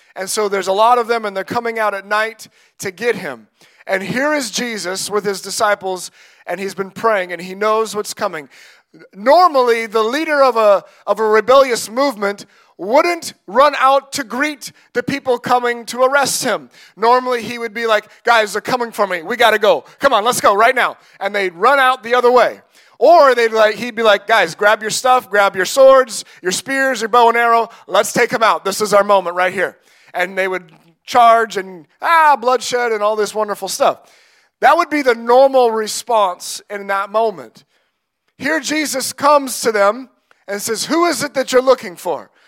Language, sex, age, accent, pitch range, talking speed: English, male, 30-49, American, 205-260 Hz, 200 wpm